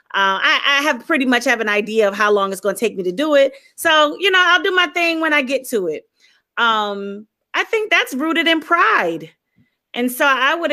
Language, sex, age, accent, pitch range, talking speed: English, female, 30-49, American, 225-310 Hz, 240 wpm